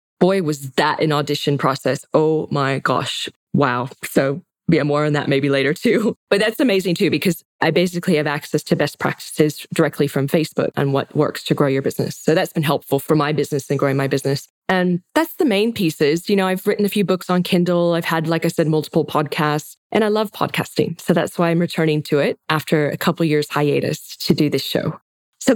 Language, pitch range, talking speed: English, 145-185 Hz, 220 wpm